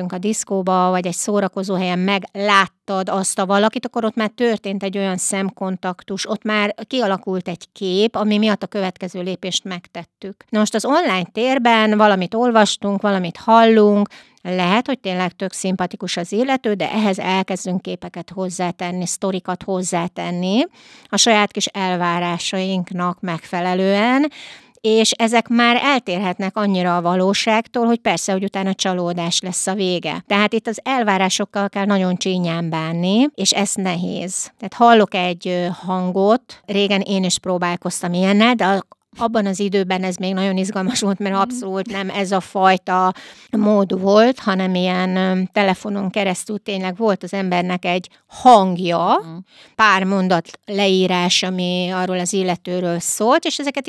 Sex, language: female, Hungarian